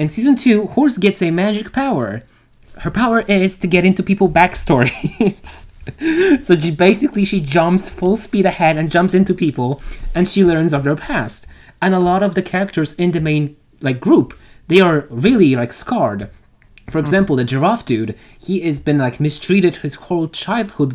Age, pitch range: 20-39, 135-185 Hz